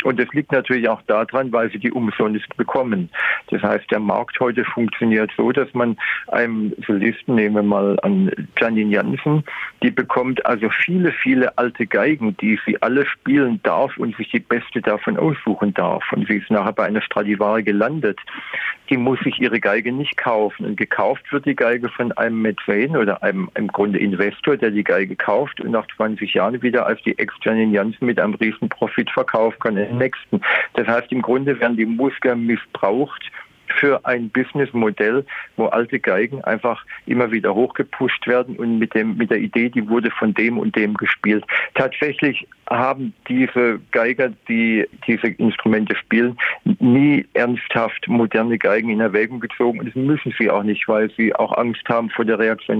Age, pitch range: 50-69, 110-130 Hz